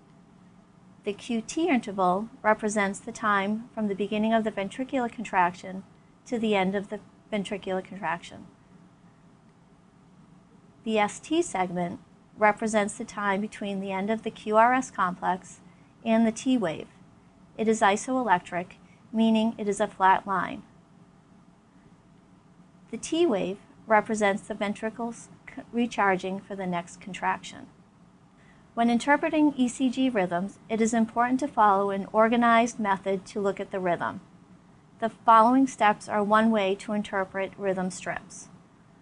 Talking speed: 130 wpm